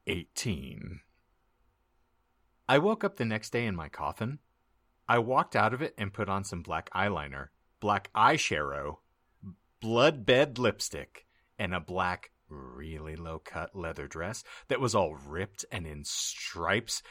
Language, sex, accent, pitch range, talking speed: English, male, American, 85-115 Hz, 140 wpm